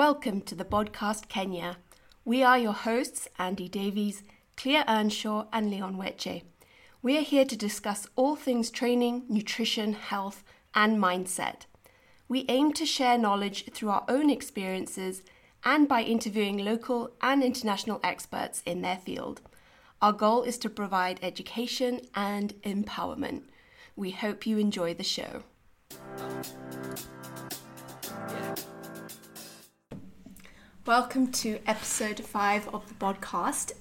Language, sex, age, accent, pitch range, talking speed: English, female, 30-49, British, 195-240 Hz, 120 wpm